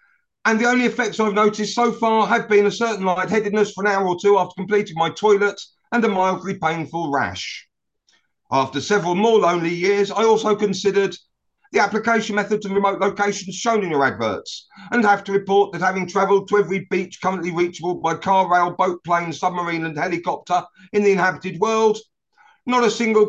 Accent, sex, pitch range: British, male, 180-210 Hz